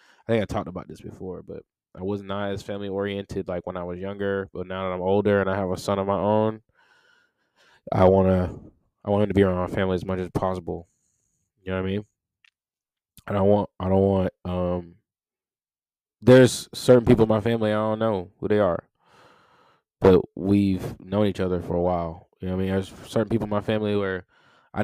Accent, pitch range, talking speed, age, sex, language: American, 95-110 Hz, 220 wpm, 20-39, male, English